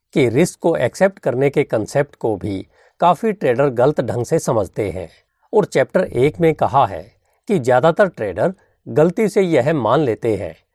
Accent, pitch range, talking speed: native, 130-190 Hz, 175 wpm